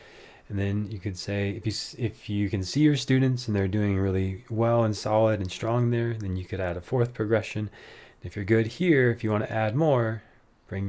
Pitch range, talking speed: 100-120 Hz, 230 wpm